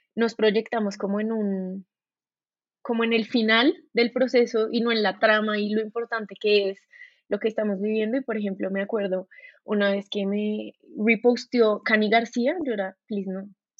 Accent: Colombian